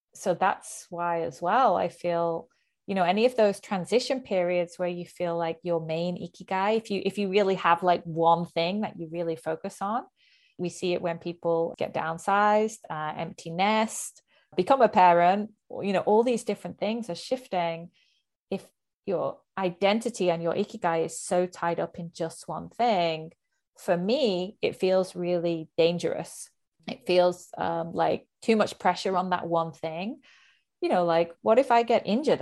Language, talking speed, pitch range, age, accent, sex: English, 175 wpm, 170-205 Hz, 30-49, British, female